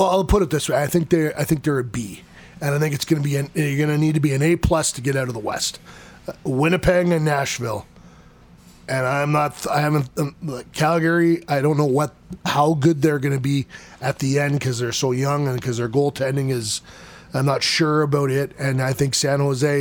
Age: 20-39